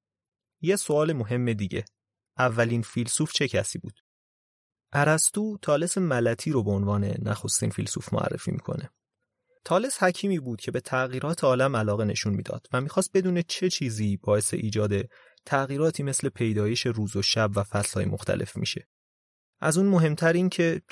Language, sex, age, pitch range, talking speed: Persian, male, 30-49, 110-160 Hz, 145 wpm